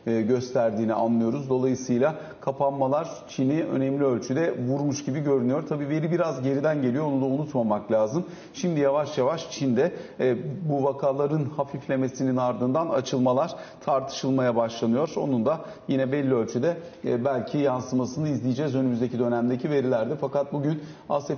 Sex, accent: male, native